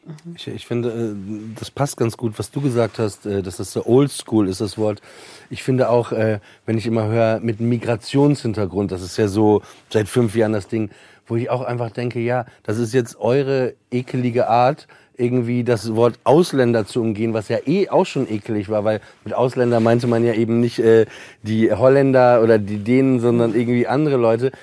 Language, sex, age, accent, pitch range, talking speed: German, male, 40-59, German, 115-150 Hz, 190 wpm